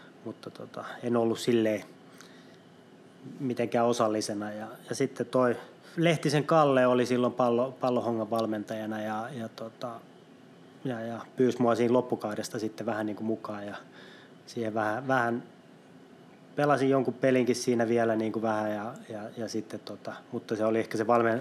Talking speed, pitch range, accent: 150 wpm, 110-125 Hz, native